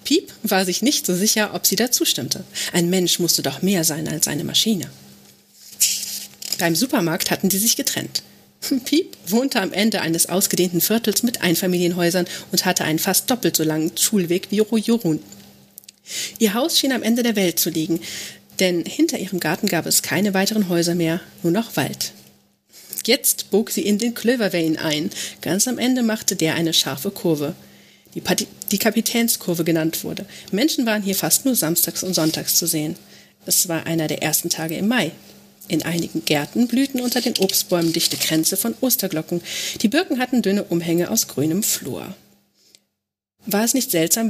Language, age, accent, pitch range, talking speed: German, 40-59, German, 170-220 Hz, 175 wpm